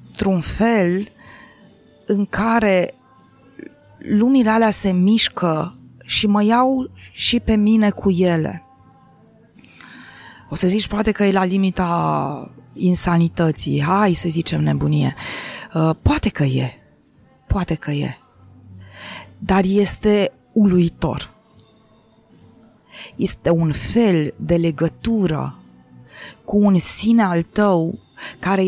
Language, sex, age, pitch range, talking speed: Romanian, female, 30-49, 155-215 Hz, 105 wpm